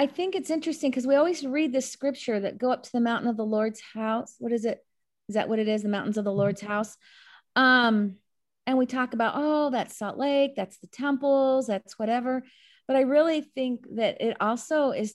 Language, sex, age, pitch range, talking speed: English, female, 30-49, 215-270 Hz, 220 wpm